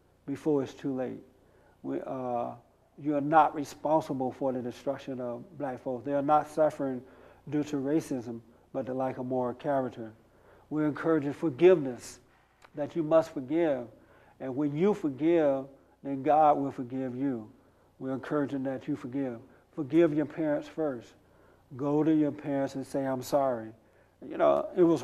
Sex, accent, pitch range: male, American, 130-155 Hz